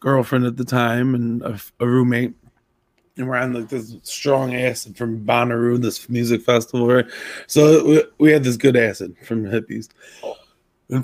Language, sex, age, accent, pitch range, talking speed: English, male, 20-39, American, 120-135 Hz, 170 wpm